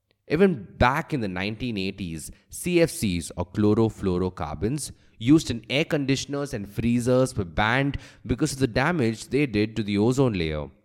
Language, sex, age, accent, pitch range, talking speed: English, male, 20-39, Indian, 100-140 Hz, 145 wpm